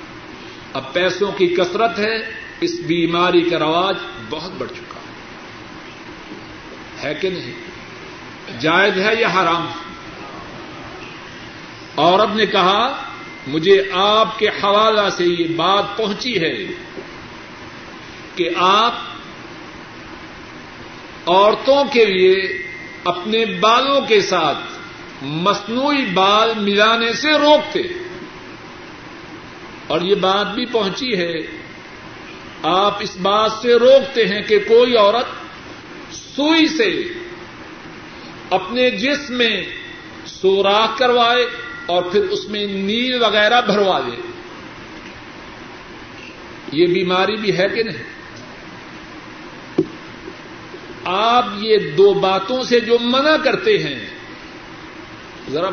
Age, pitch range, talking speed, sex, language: 50-69, 185-245 Hz, 100 wpm, male, Urdu